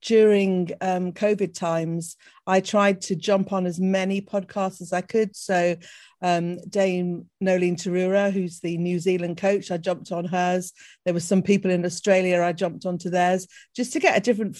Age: 50-69